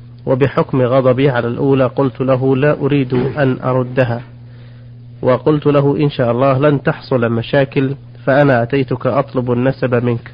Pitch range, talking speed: 120-135 Hz, 135 wpm